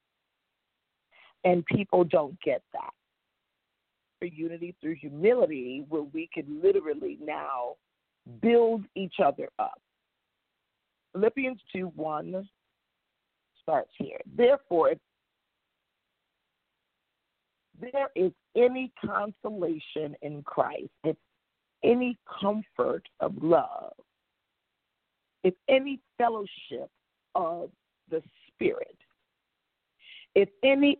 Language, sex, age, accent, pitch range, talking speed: English, female, 50-69, American, 170-275 Hz, 85 wpm